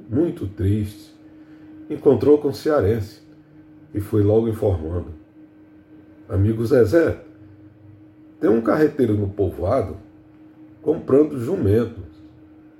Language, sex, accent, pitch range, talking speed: Portuguese, male, Brazilian, 105-145 Hz, 90 wpm